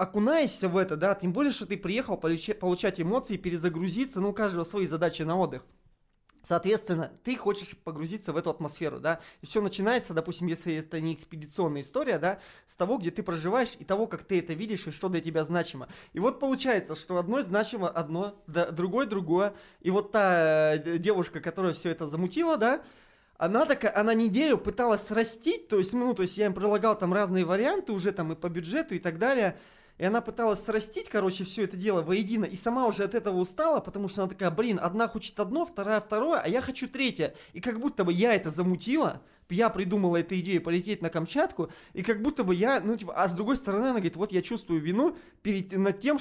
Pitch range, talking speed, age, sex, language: 175-225 Hz, 205 wpm, 20-39, male, Russian